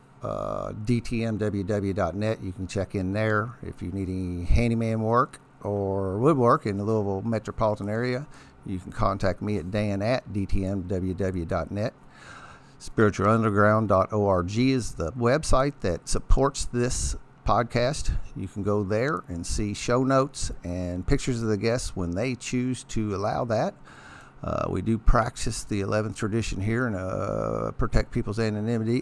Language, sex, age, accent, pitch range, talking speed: English, male, 50-69, American, 95-115 Hz, 140 wpm